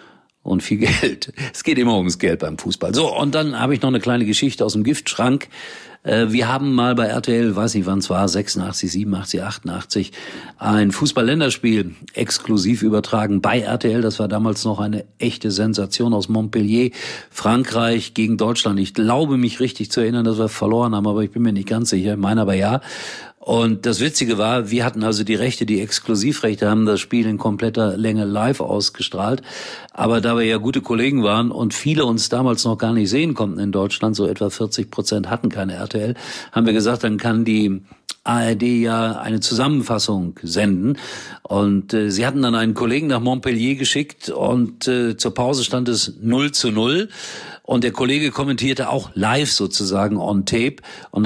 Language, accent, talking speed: German, German, 185 wpm